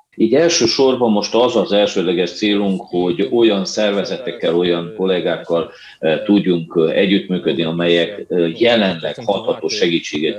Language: Hungarian